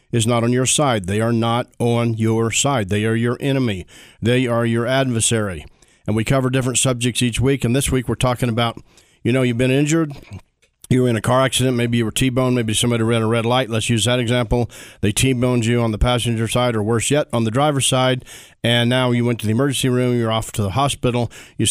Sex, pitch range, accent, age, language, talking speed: male, 115-130 Hz, American, 40-59, English, 235 wpm